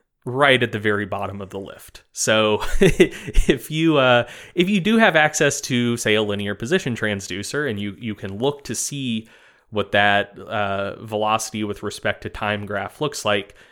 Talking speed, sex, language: 180 wpm, male, English